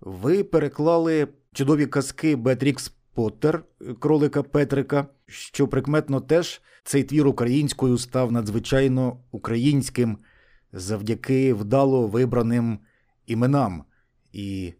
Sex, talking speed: male, 90 wpm